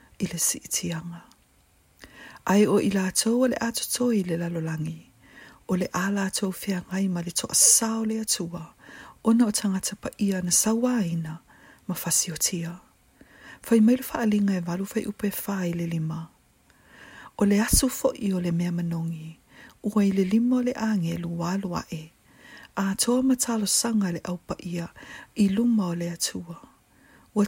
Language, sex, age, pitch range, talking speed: English, female, 40-59, 170-220 Hz, 145 wpm